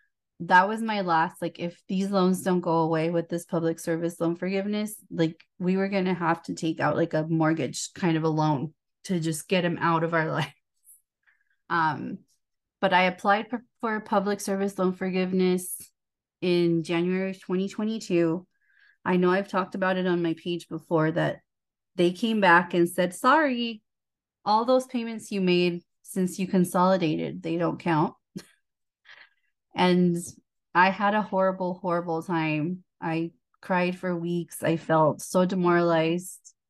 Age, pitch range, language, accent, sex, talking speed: 20-39, 170-195 Hz, English, American, female, 160 wpm